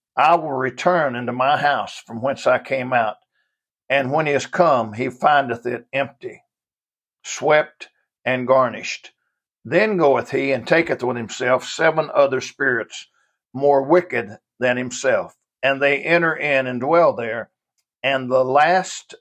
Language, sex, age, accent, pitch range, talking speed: English, male, 60-79, American, 125-150 Hz, 145 wpm